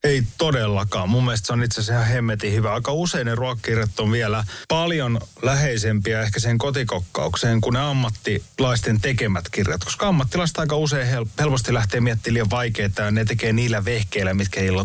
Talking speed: 170 wpm